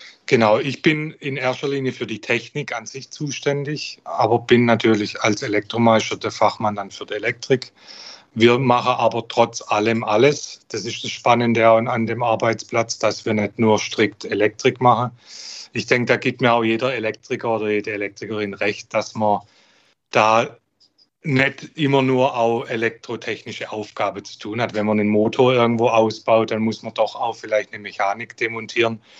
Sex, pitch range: male, 105-125 Hz